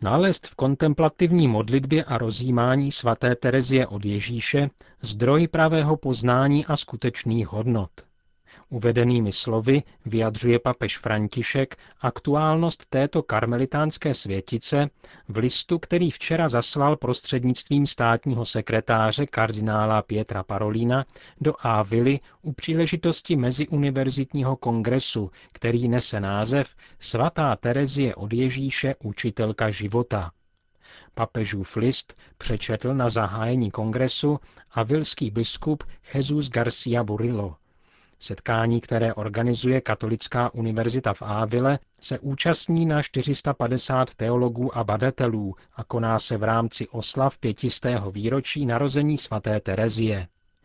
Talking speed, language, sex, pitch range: 105 wpm, Czech, male, 110-135 Hz